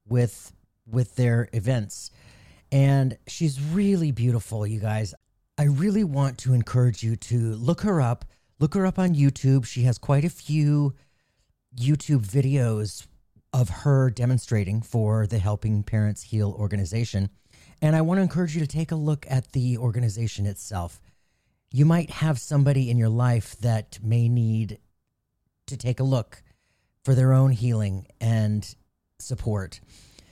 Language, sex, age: English, male, 40-59